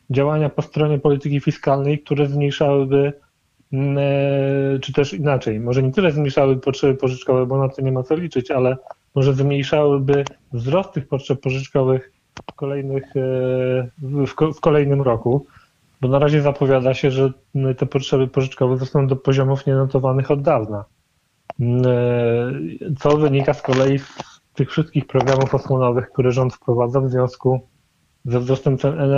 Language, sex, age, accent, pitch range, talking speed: Polish, male, 30-49, native, 130-145 Hz, 135 wpm